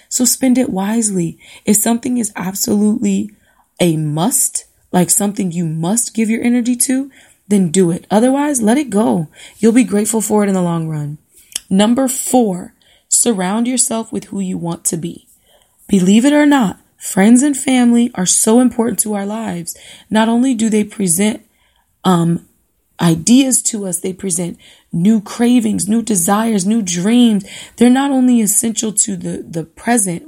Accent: American